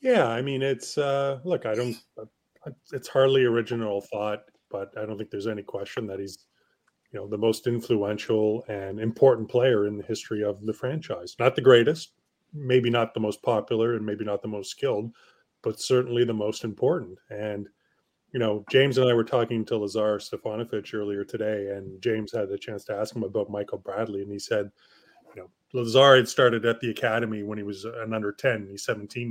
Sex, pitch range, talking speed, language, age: male, 105-125 Hz, 195 wpm, English, 30-49